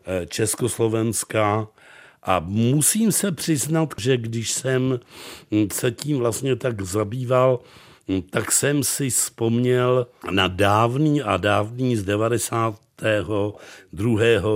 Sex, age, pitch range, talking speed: male, 60-79, 100-125 Hz, 95 wpm